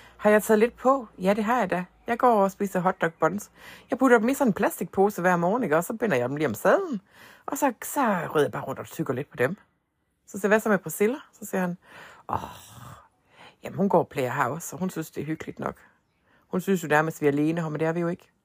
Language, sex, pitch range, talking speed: Danish, female, 160-220 Hz, 260 wpm